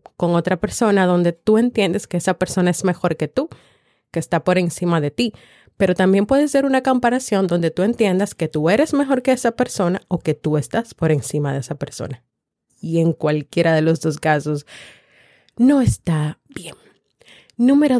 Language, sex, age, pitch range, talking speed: Spanish, female, 30-49, 165-215 Hz, 185 wpm